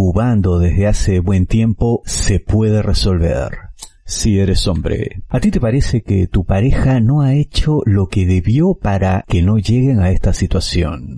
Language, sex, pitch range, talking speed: Spanish, male, 95-120 Hz, 160 wpm